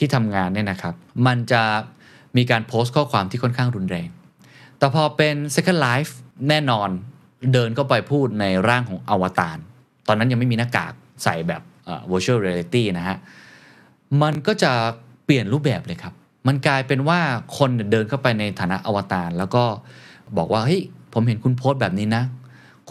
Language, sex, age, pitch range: Thai, male, 20-39, 95-135 Hz